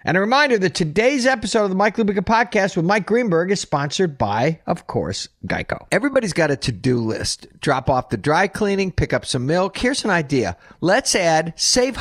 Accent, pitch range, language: American, 120-195 Hz, English